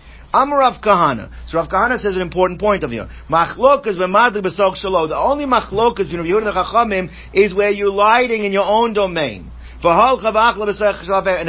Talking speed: 130 wpm